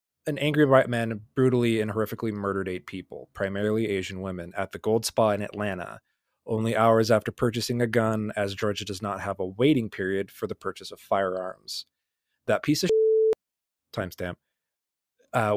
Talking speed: 170 wpm